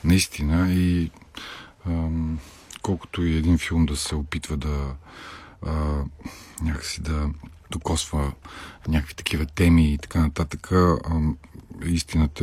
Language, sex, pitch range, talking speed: Bulgarian, male, 75-85 Hz, 105 wpm